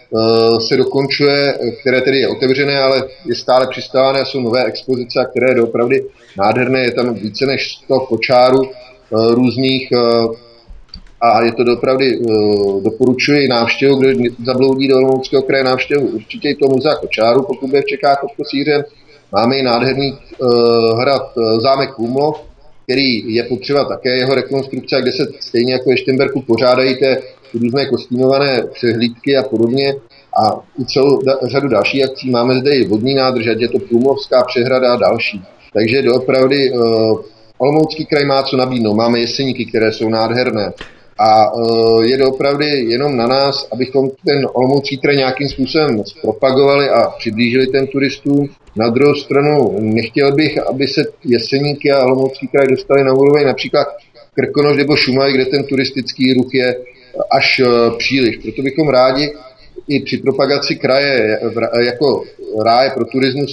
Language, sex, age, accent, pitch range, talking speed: Czech, male, 30-49, native, 120-140 Hz, 145 wpm